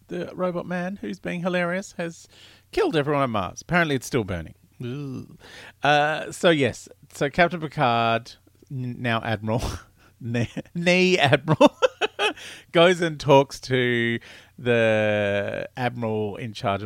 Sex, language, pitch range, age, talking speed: male, English, 105-155 Hz, 40-59, 125 wpm